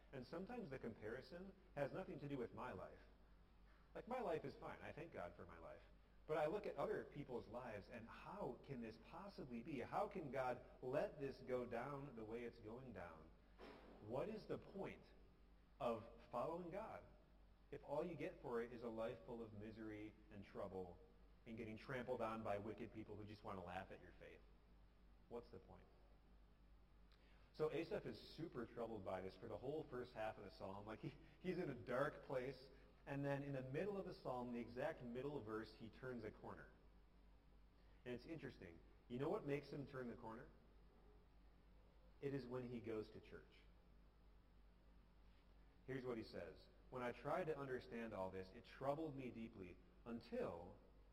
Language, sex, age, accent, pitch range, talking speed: English, male, 30-49, American, 100-140 Hz, 185 wpm